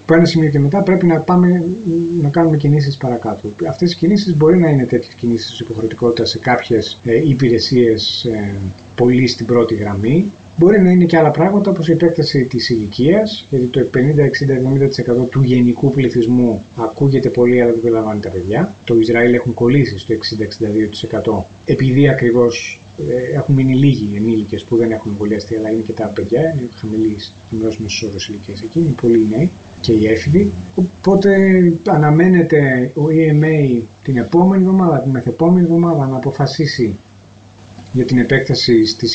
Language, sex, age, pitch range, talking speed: Greek, male, 30-49, 110-150 Hz, 155 wpm